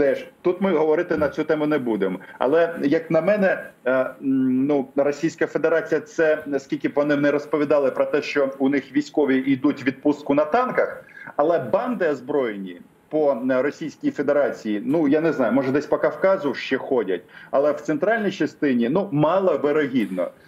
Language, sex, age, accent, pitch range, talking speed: Russian, male, 40-59, native, 150-190 Hz, 155 wpm